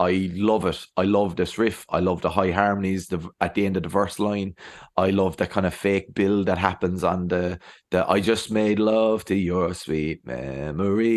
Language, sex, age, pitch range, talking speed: English, male, 30-49, 95-115 Hz, 215 wpm